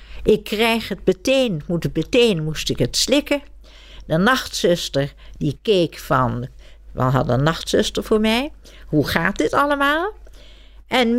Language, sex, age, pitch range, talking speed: Dutch, female, 60-79, 175-255 Hz, 135 wpm